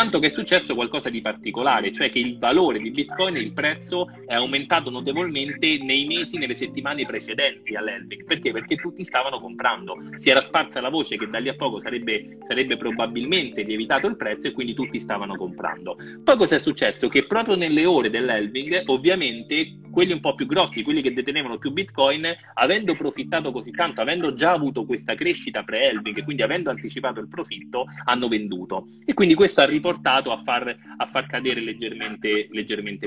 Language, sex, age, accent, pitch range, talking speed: Italian, male, 30-49, native, 115-175 Hz, 180 wpm